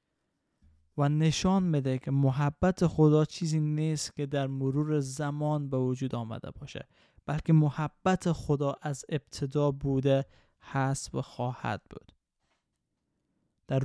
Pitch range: 135-160 Hz